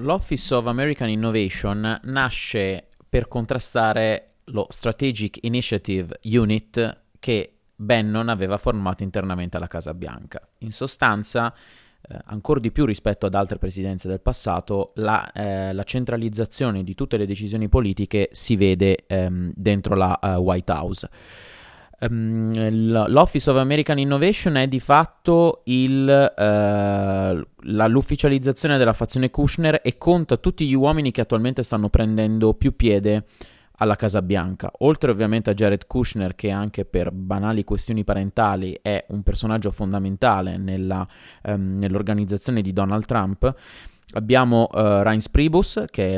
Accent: native